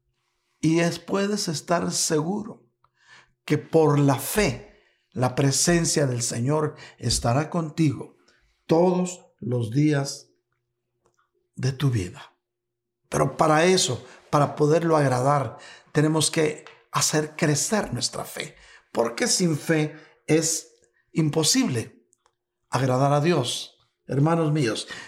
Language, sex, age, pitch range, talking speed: Spanish, male, 50-69, 140-180 Hz, 100 wpm